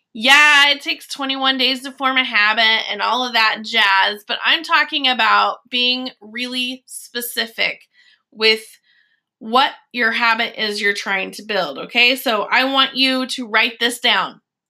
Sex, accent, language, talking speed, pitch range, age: female, American, English, 160 wpm, 230-275 Hz, 20-39